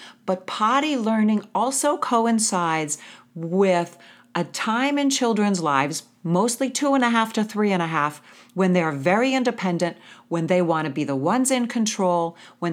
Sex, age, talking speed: female, 40-59, 165 wpm